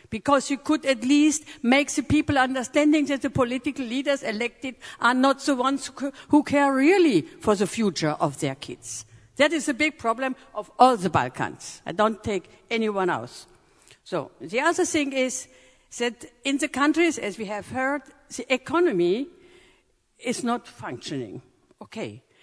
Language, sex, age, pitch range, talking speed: English, female, 50-69, 245-310 Hz, 160 wpm